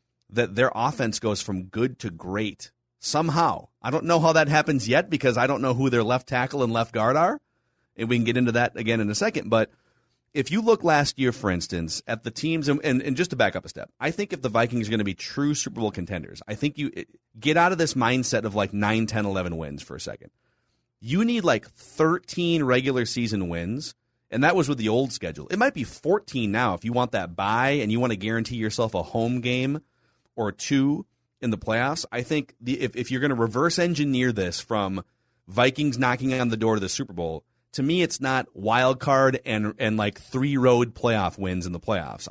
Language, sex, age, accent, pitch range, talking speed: English, male, 30-49, American, 110-140 Hz, 230 wpm